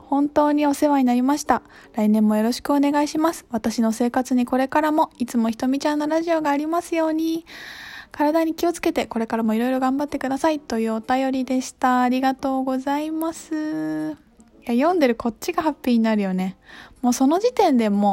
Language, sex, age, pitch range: Japanese, female, 20-39, 225-295 Hz